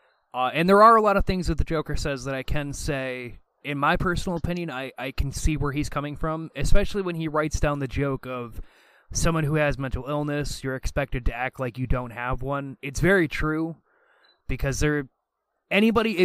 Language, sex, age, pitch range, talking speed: English, male, 20-39, 135-180 Hz, 205 wpm